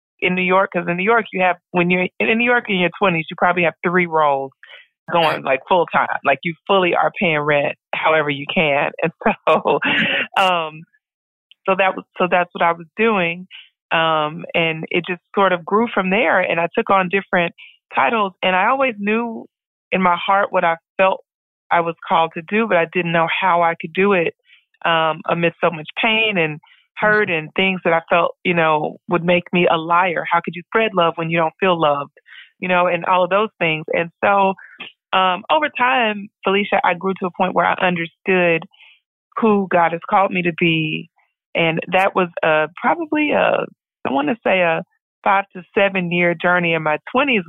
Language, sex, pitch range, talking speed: English, female, 165-195 Hz, 205 wpm